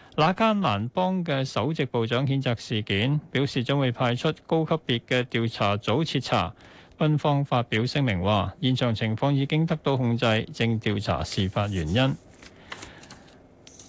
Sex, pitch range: male, 115-155 Hz